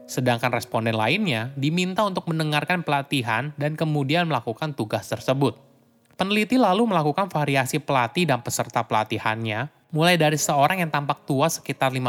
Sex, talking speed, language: male, 135 wpm, Indonesian